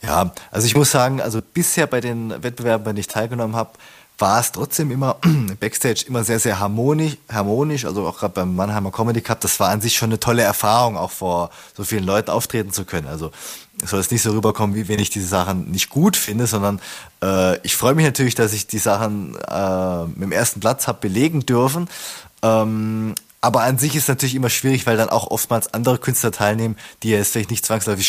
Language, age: German, 20-39